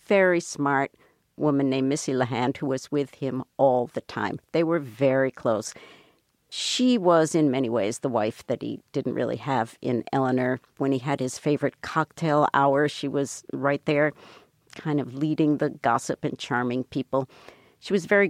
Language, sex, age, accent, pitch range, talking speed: English, female, 60-79, American, 135-170 Hz, 175 wpm